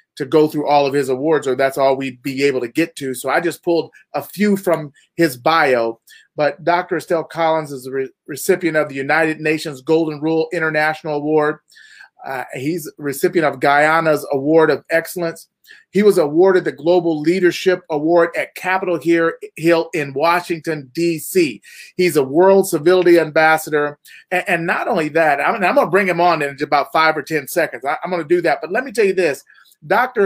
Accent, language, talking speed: American, English, 185 wpm